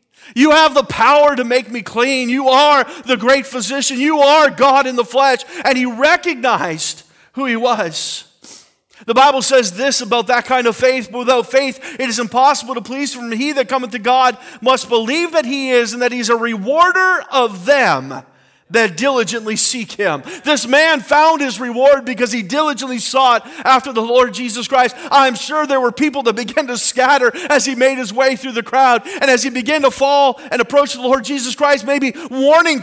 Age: 40-59